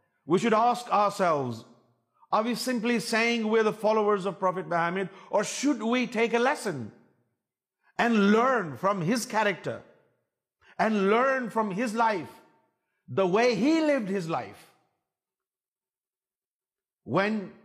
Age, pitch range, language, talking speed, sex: 50-69, 155-235 Hz, Urdu, 125 wpm, male